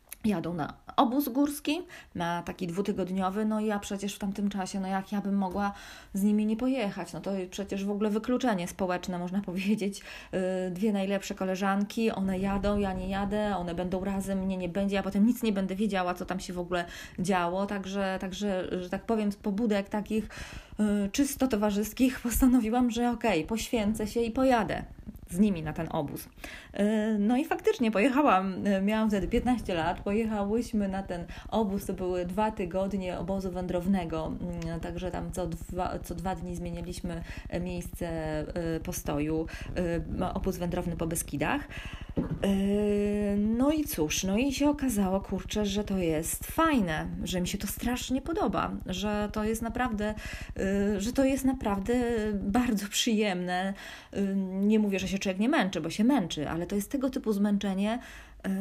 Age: 20-39